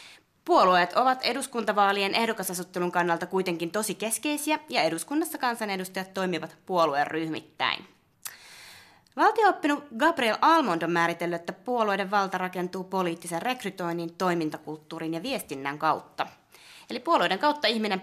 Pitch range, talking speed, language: 170-245 Hz, 110 wpm, Finnish